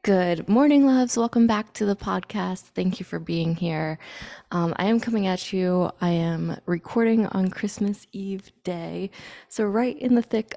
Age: 20-39